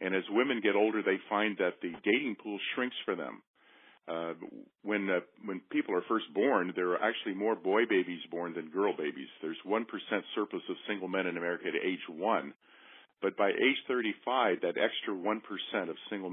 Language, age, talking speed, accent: English, 50-69, 185 wpm, American